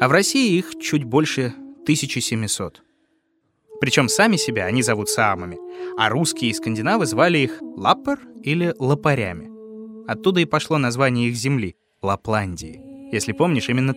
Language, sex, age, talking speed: Russian, male, 20-39, 140 wpm